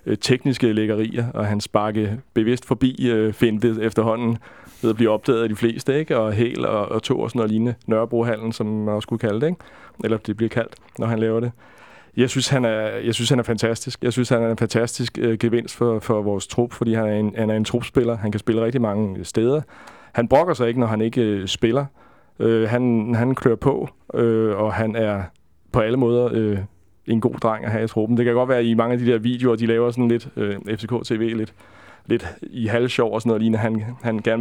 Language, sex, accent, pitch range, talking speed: Danish, male, native, 105-120 Hz, 230 wpm